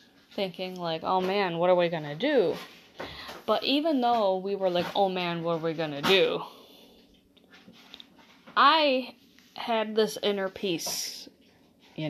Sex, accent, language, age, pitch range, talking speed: female, American, English, 20-39, 175-235 Hz, 150 wpm